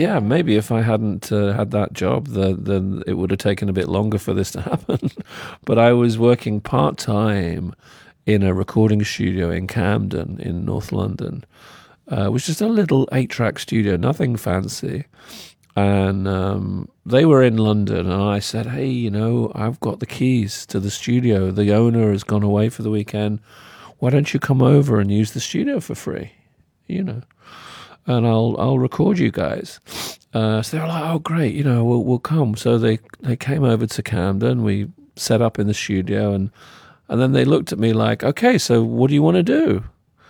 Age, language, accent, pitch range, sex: 40-59, Chinese, British, 100-135 Hz, male